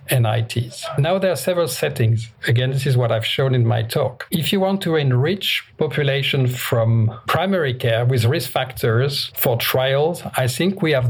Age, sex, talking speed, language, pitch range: 50-69, male, 180 wpm, English, 120-140 Hz